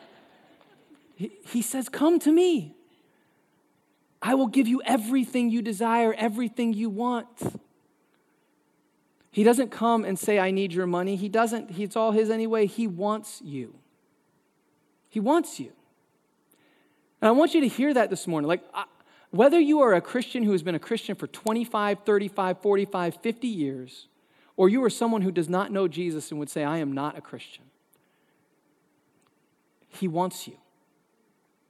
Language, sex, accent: English, male, American